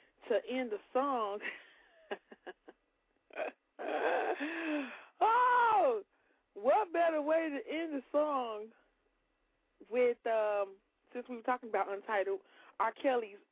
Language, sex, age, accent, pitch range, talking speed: English, female, 20-39, American, 195-270 Hz, 100 wpm